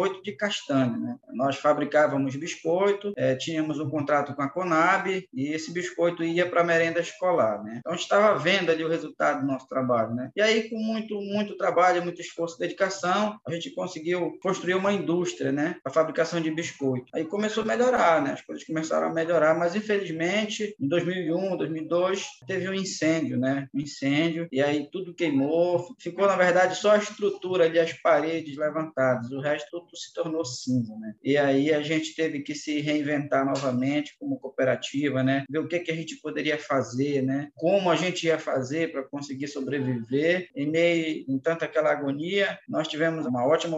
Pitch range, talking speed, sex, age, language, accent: 145-180 Hz, 185 wpm, male, 20-39, Portuguese, Brazilian